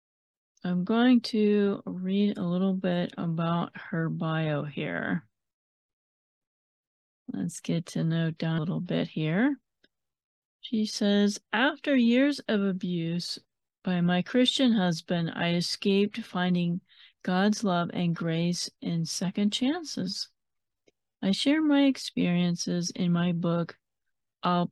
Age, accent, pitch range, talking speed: 40-59, American, 170-220 Hz, 115 wpm